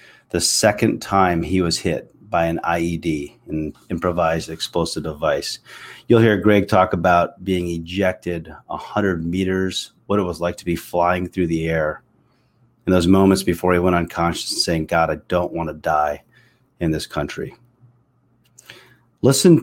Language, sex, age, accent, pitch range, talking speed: English, male, 30-49, American, 90-115 Hz, 160 wpm